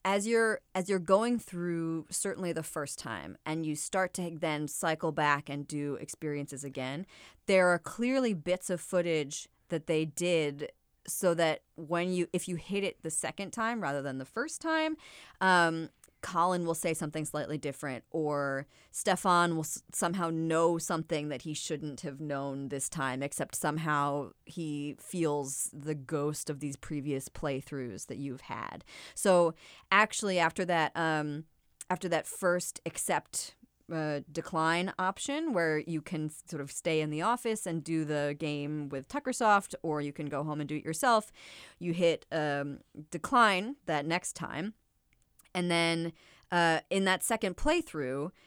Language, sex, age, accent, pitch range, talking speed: English, female, 30-49, American, 150-185 Hz, 160 wpm